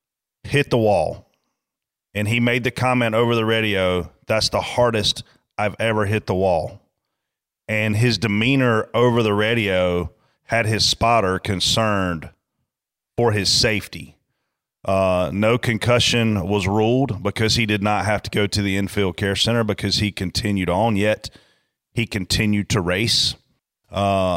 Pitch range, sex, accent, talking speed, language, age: 95-115 Hz, male, American, 145 wpm, English, 30-49